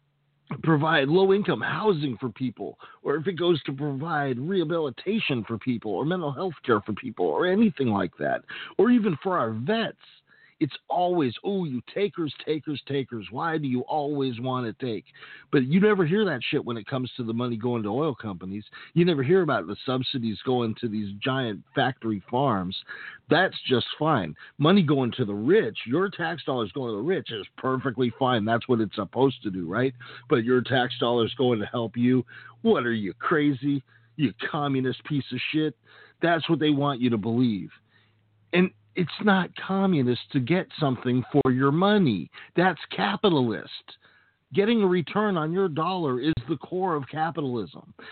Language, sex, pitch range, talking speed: English, male, 125-165 Hz, 180 wpm